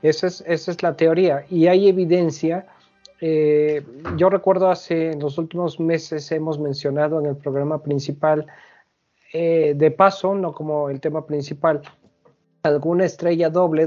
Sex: male